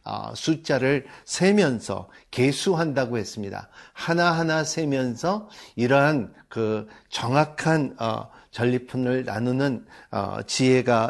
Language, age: Korean, 50-69